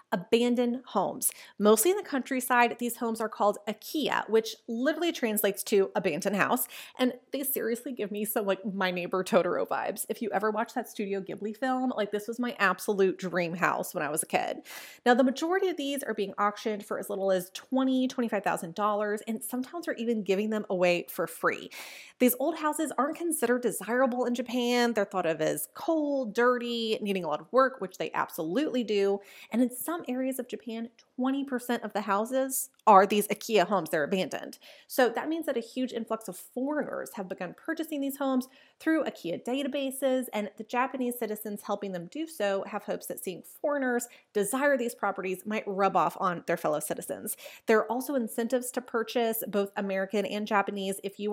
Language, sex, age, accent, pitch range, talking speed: English, female, 30-49, American, 205-260 Hz, 190 wpm